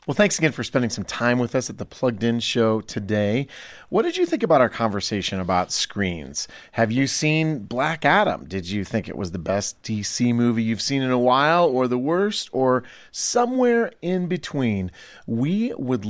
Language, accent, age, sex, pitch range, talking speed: English, American, 40-59, male, 115-145 Hz, 195 wpm